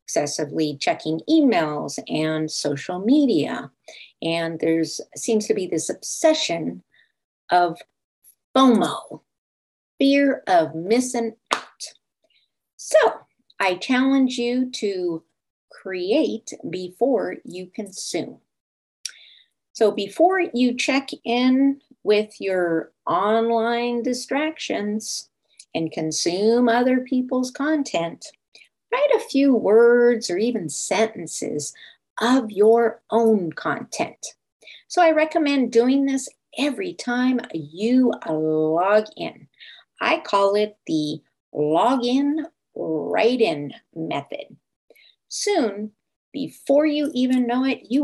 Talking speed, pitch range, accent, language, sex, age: 95 wpm, 185-265 Hz, American, English, female, 50-69